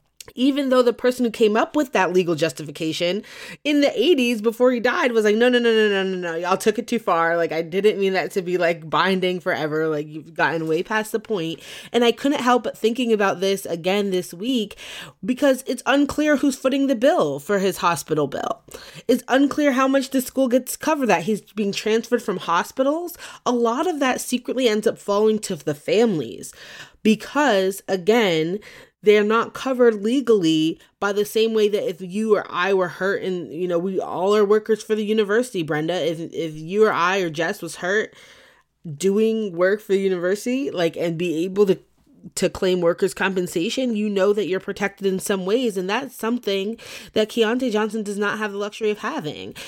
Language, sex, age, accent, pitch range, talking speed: English, female, 20-39, American, 180-240 Hz, 205 wpm